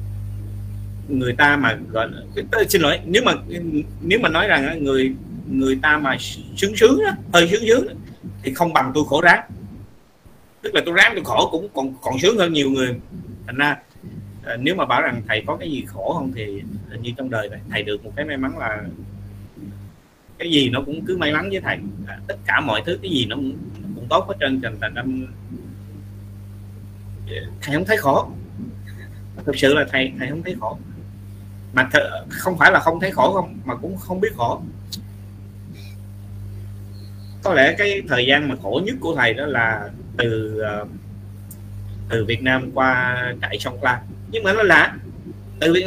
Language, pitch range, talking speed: Vietnamese, 100-140 Hz, 185 wpm